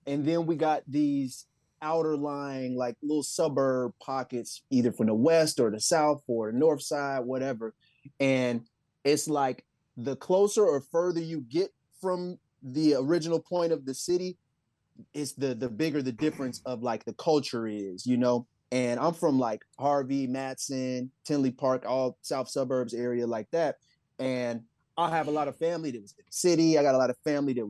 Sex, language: male, English